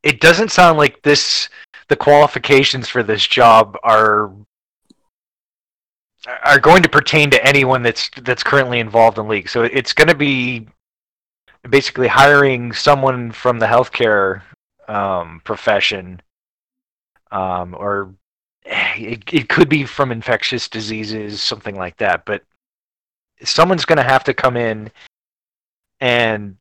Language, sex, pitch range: English, male, 105-135 Hz